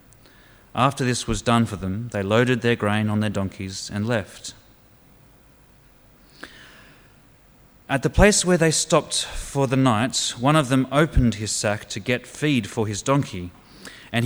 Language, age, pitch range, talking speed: English, 30-49, 105-140 Hz, 155 wpm